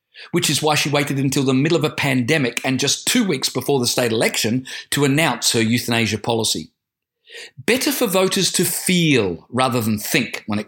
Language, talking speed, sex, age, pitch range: English, 190 wpm, male, 40-59, 120-175 Hz